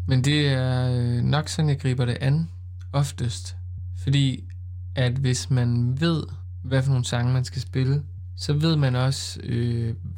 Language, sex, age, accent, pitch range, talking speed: Danish, male, 20-39, native, 115-140 Hz, 160 wpm